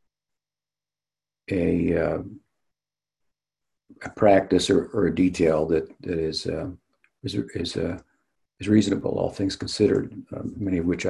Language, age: English, 60-79